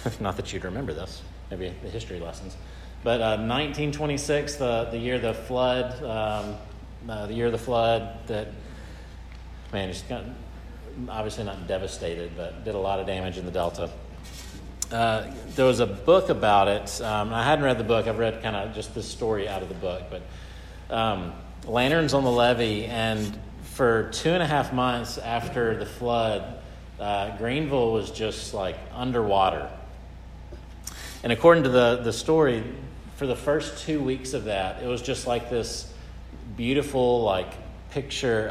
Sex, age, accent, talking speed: male, 40-59, American, 165 wpm